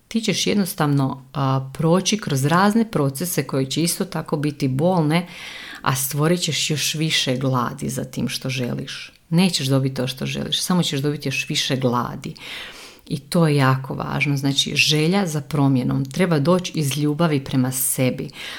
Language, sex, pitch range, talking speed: Croatian, female, 135-175 Hz, 160 wpm